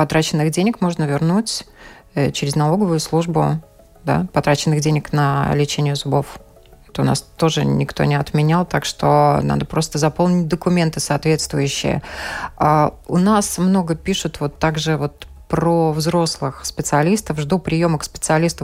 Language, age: Russian, 20-39